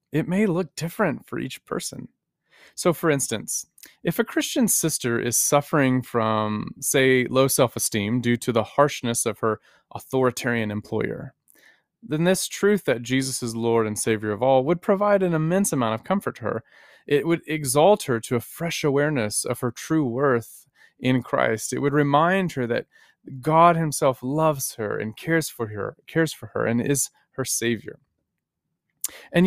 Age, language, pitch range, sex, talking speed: 30-49, English, 115-170 Hz, male, 165 wpm